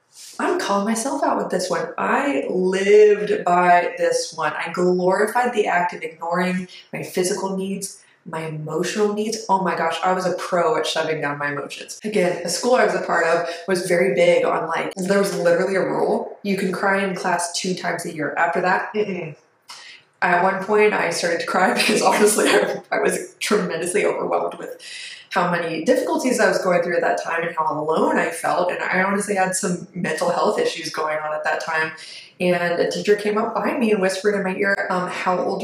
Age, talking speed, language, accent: 20-39, 205 wpm, English, American